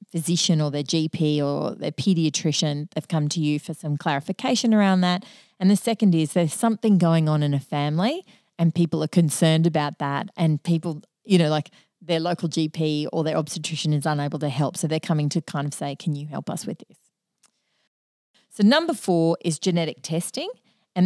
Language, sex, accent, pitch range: English, female, Australian, 150-195 Hz